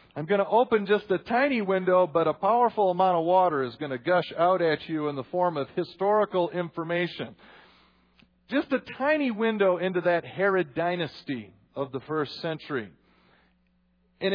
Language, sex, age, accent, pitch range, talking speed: English, male, 40-59, American, 150-200 Hz, 165 wpm